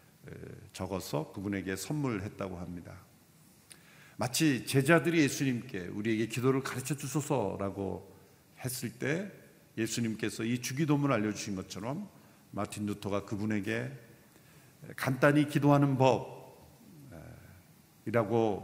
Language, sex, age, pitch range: Korean, male, 50-69, 105-145 Hz